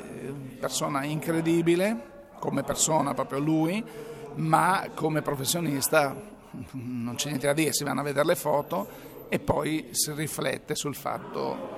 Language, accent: Italian, native